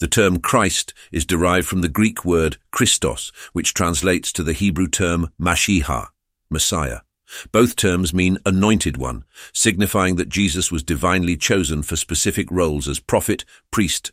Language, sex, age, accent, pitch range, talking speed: English, male, 50-69, British, 80-100 Hz, 150 wpm